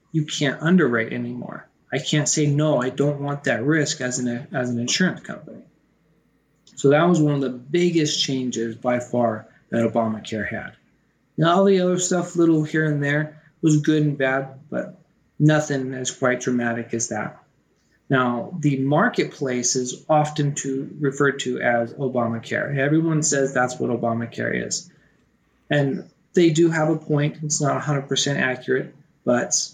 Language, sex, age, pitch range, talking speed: English, male, 20-39, 125-155 Hz, 160 wpm